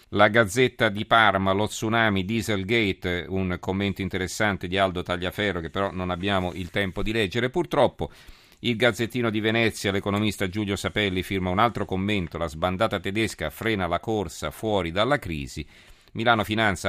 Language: Italian